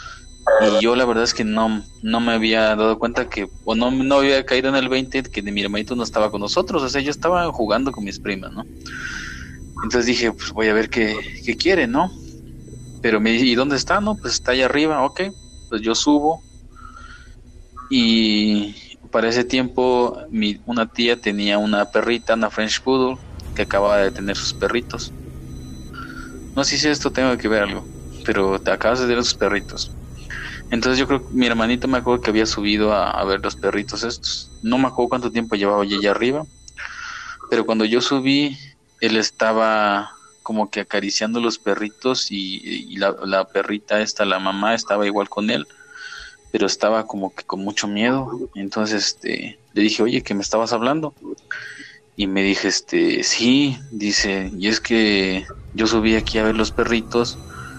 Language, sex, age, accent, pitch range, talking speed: Spanish, male, 20-39, Mexican, 100-125 Hz, 185 wpm